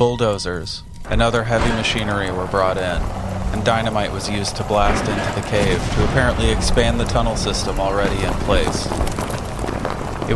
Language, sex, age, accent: English, male, 30-49, American